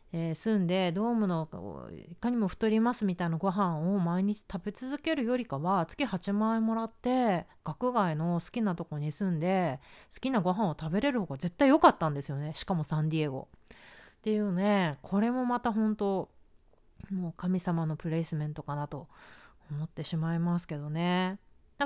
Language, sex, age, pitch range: Japanese, female, 30-49, 165-230 Hz